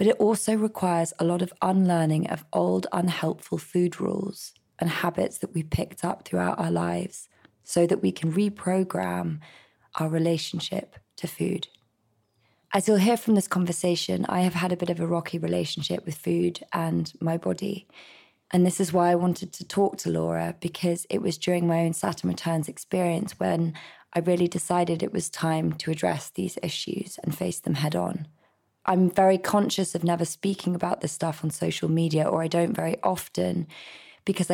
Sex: female